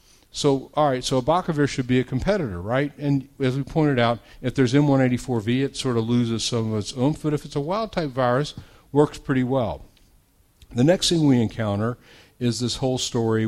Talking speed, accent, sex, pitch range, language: 195 wpm, American, male, 110-135 Hz, English